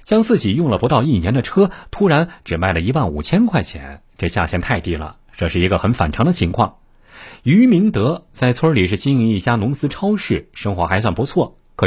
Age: 50-69